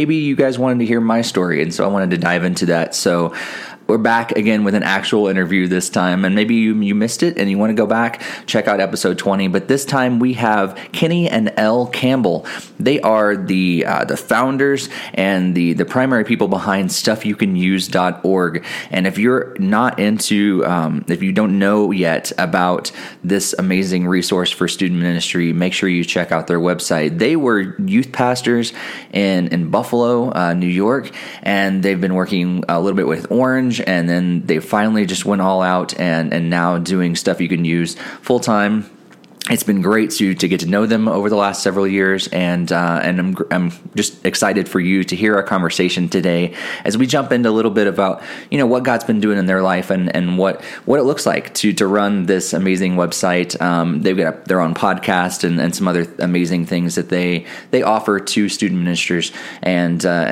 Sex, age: male, 20-39